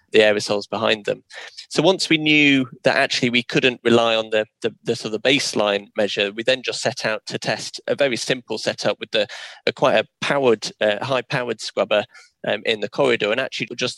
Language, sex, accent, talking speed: English, male, British, 210 wpm